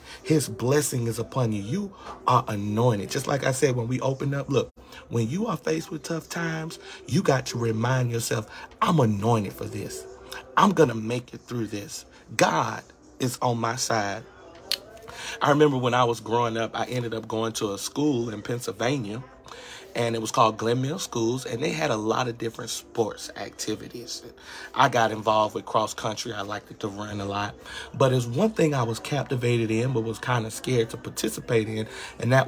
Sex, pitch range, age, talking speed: male, 115-140 Hz, 40-59, 200 wpm